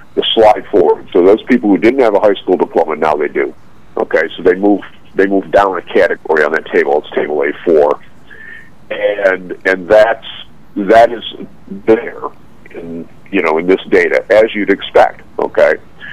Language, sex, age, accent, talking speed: English, male, 50-69, American, 180 wpm